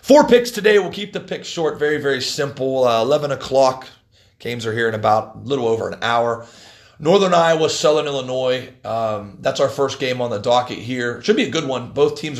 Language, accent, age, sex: English, American, 30-49, male